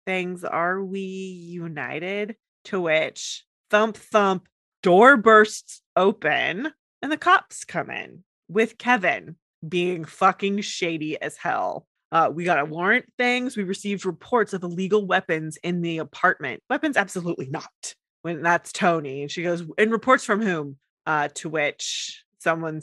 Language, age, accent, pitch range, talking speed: English, 20-39, American, 160-210 Hz, 140 wpm